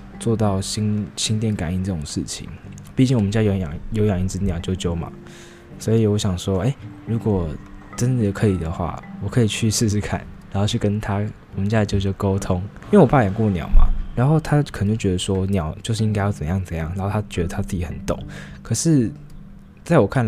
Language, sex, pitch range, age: Chinese, male, 90-110 Hz, 20-39